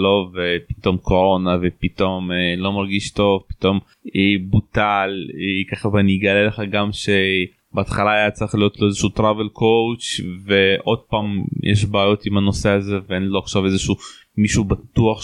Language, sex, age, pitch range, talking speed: Hebrew, male, 20-39, 100-120 Hz, 160 wpm